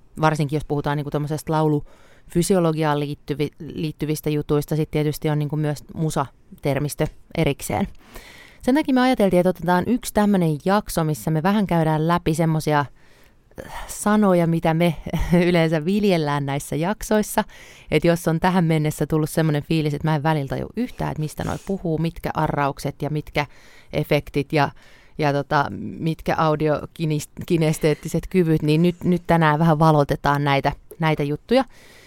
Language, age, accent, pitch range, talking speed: Finnish, 30-49, native, 150-175 Hz, 140 wpm